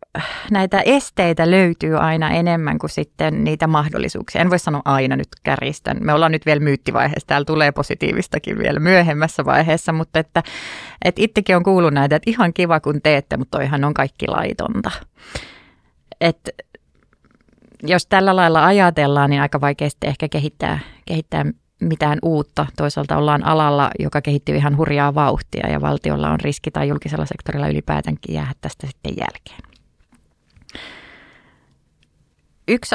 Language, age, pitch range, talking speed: Finnish, 30-49, 145-180 Hz, 140 wpm